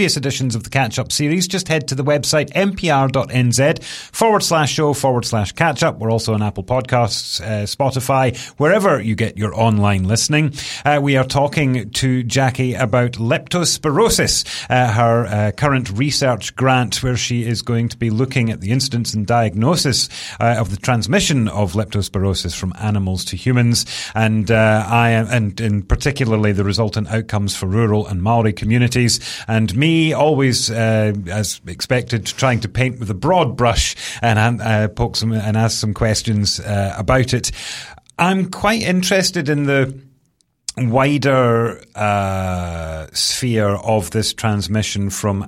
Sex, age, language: male, 30-49, English